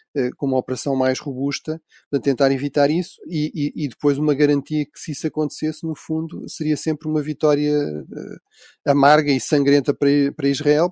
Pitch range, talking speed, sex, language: 130-150 Hz, 175 wpm, male, Portuguese